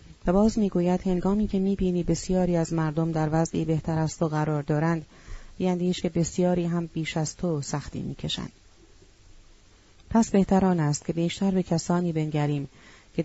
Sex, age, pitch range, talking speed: female, 30-49, 155-180 Hz, 150 wpm